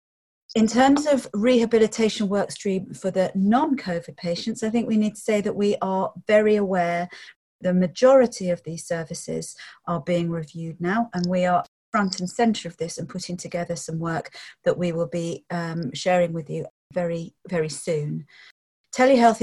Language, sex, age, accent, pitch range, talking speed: English, female, 40-59, British, 175-215 Hz, 170 wpm